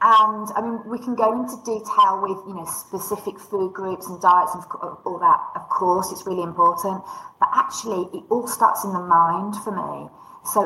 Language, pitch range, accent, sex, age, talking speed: English, 180-230 Hz, British, female, 40-59, 195 wpm